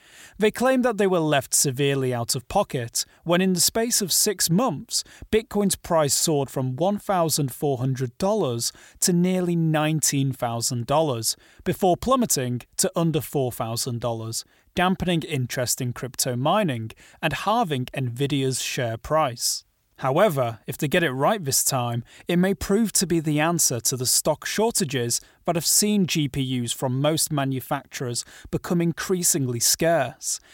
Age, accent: 30-49, British